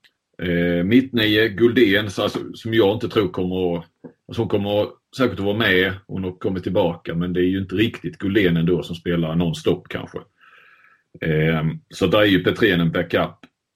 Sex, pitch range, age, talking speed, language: male, 85-105 Hz, 30-49, 185 wpm, Swedish